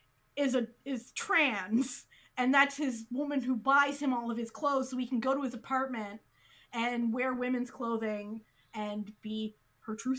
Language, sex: English, female